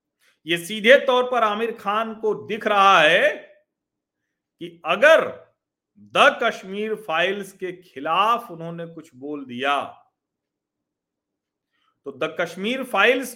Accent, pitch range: native, 180-250 Hz